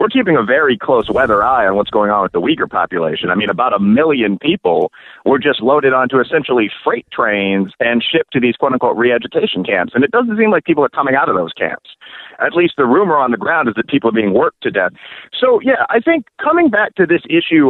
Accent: American